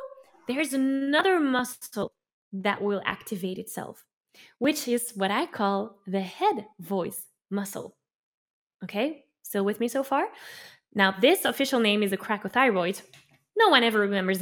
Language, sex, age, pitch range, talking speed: English, female, 10-29, 195-275 Hz, 140 wpm